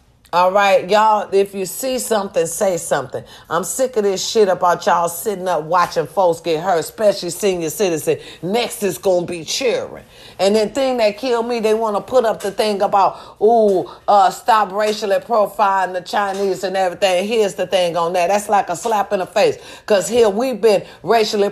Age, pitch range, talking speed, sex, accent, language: 40-59, 190-240 Hz, 190 wpm, female, American, English